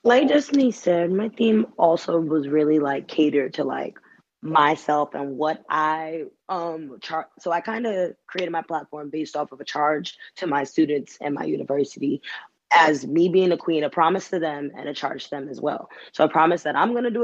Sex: female